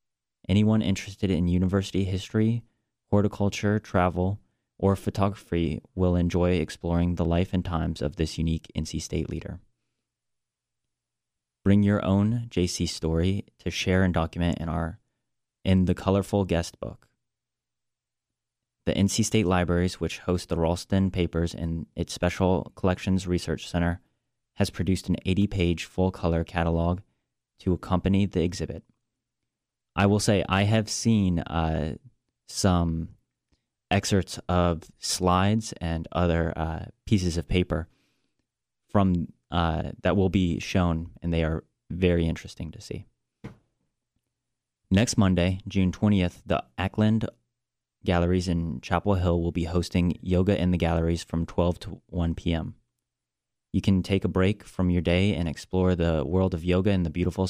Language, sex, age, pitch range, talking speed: English, male, 30-49, 85-100 Hz, 140 wpm